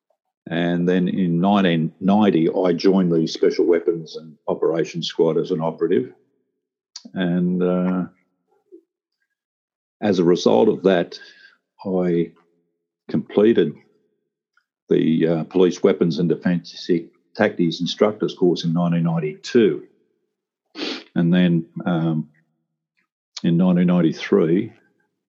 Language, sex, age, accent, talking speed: English, male, 50-69, Australian, 95 wpm